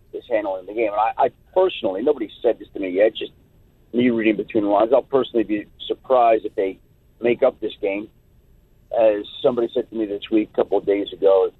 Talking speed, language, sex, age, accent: 220 wpm, English, male, 50-69, American